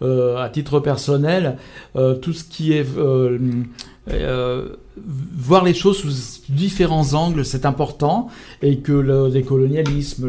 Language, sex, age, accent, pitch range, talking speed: French, male, 60-79, French, 130-150 Hz, 135 wpm